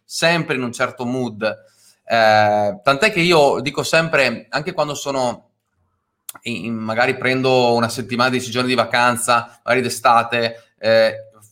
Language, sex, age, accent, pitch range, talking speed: Italian, male, 30-49, native, 115-140 Hz, 135 wpm